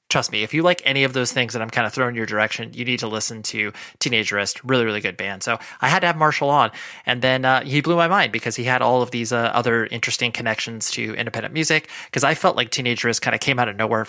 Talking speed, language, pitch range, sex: 275 wpm, English, 115-140 Hz, male